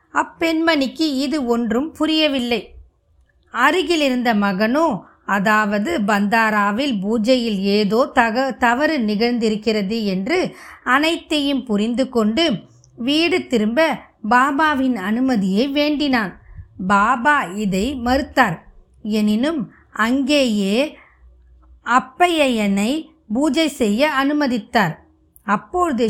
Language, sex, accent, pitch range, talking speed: Tamil, female, native, 205-290 Hz, 70 wpm